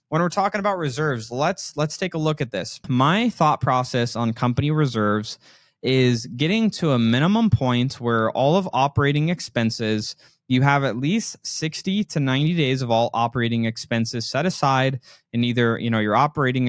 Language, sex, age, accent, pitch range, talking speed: English, male, 20-39, American, 115-155 Hz, 175 wpm